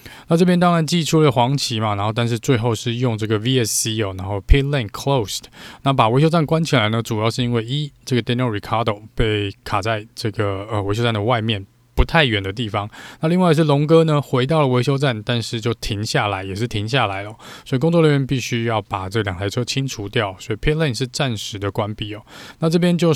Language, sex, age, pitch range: Chinese, male, 20-39, 110-140 Hz